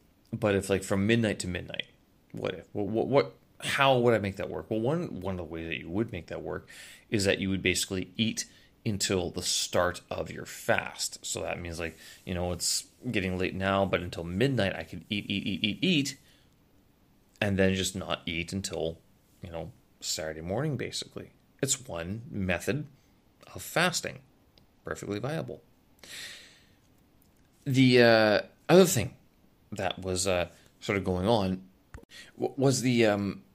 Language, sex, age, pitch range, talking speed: English, male, 30-49, 90-110 Hz, 165 wpm